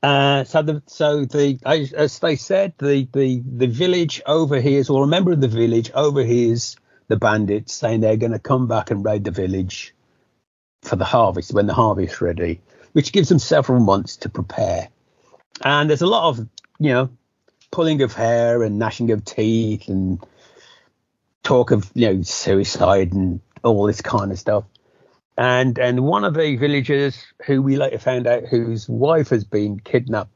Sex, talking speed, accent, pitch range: male, 175 wpm, British, 110-140 Hz